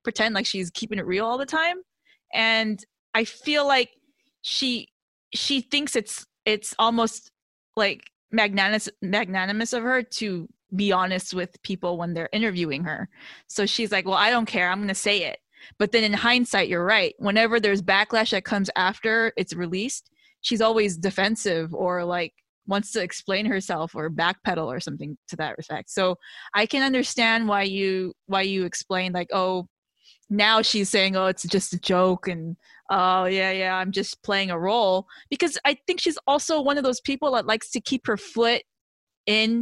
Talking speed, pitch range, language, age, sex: 180 wpm, 190-240 Hz, English, 20-39, female